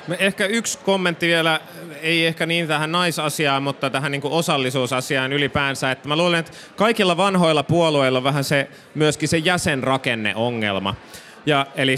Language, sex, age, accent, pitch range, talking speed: Finnish, male, 30-49, native, 135-170 Hz, 145 wpm